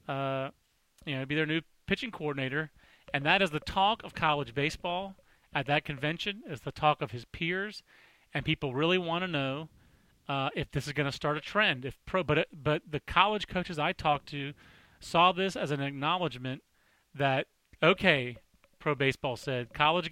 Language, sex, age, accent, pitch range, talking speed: English, male, 30-49, American, 140-185 Hz, 180 wpm